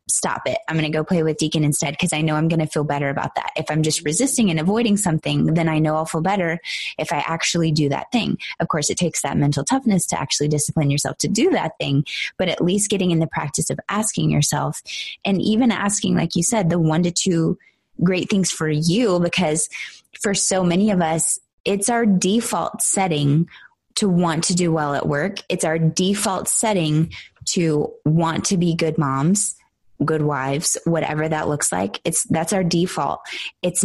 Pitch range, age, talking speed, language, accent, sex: 155-190 Hz, 20-39, 205 wpm, English, American, female